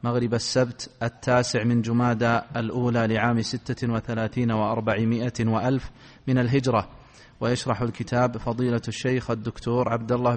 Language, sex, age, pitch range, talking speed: Arabic, male, 30-49, 125-150 Hz, 110 wpm